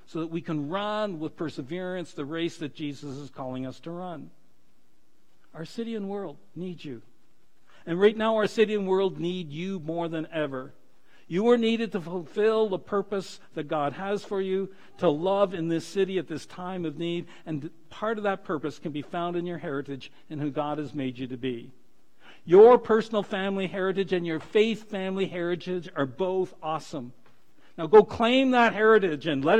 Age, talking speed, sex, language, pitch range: 60-79, 190 wpm, male, English, 140-190 Hz